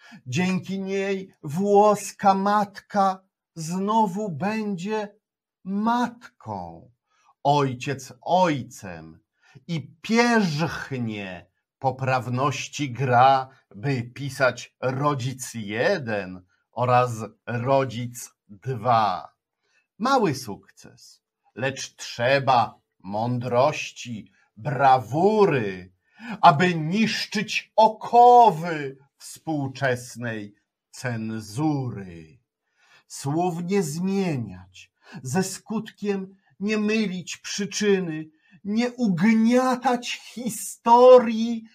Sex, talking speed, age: male, 60 wpm, 50-69